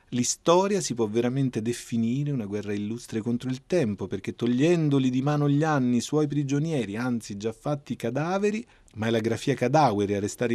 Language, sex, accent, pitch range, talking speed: Italian, male, native, 110-145 Hz, 175 wpm